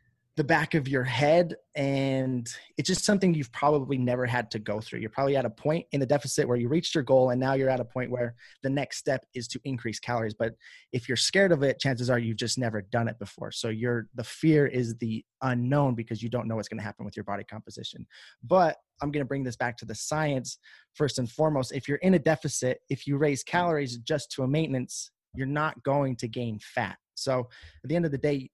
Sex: male